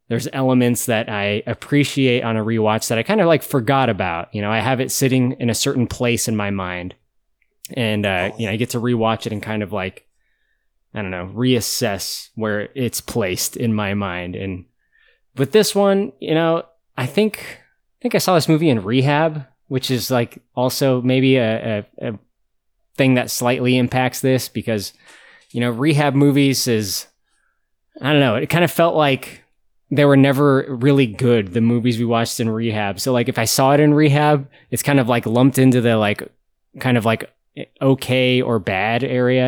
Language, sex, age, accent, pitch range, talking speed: English, male, 20-39, American, 110-135 Hz, 195 wpm